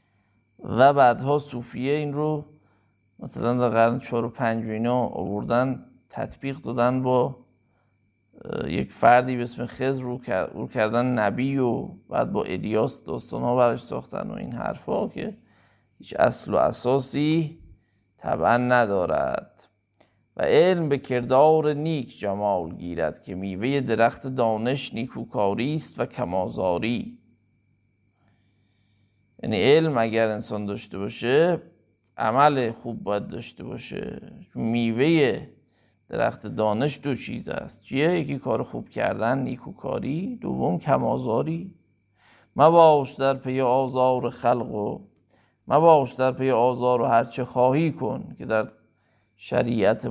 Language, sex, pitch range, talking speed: Persian, male, 110-135 Hz, 120 wpm